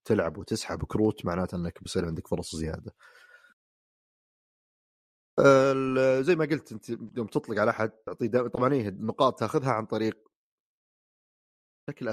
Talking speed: 125 wpm